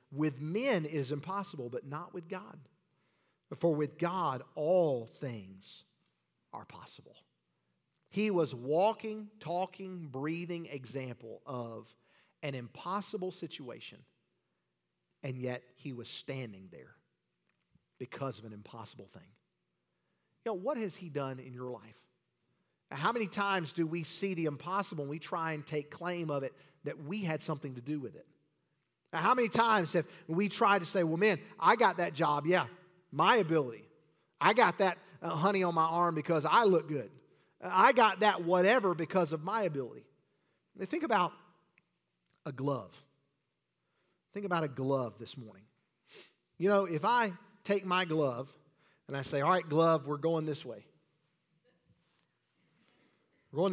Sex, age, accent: male, 40-59, American